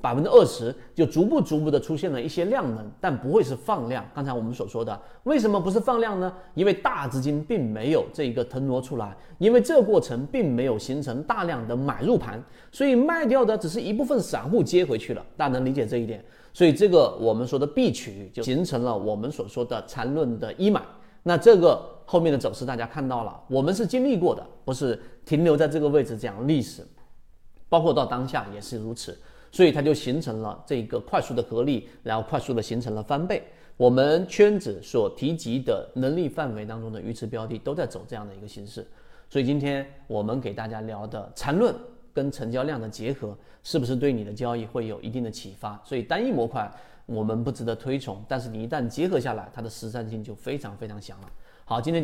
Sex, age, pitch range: male, 30-49, 115-165 Hz